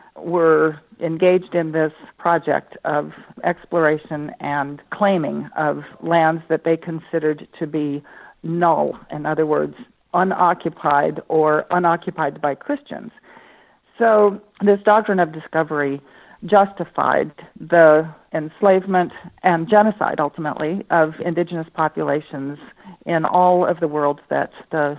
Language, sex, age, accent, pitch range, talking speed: English, female, 50-69, American, 155-190 Hz, 110 wpm